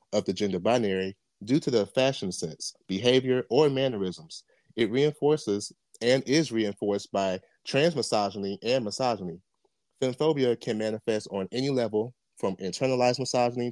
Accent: American